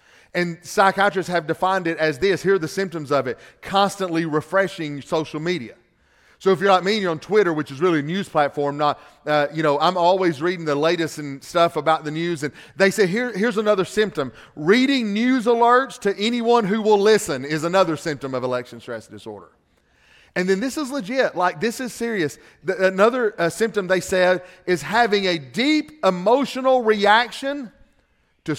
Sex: male